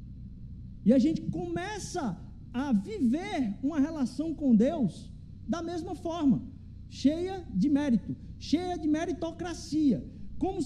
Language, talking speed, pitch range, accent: Portuguese, 115 wpm, 205-310 Hz, Brazilian